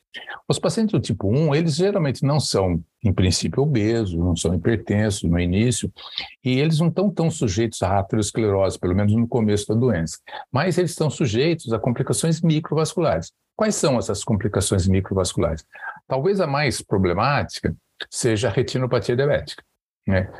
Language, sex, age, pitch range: Portuguese, male, 60-79, 100-135 Hz